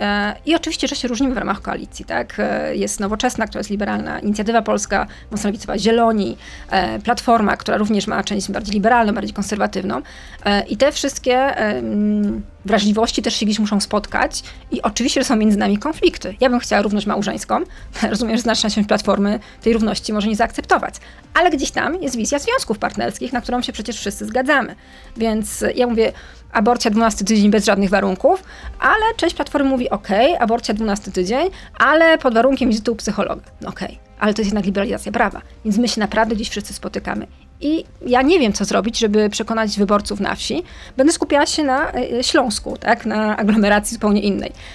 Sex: female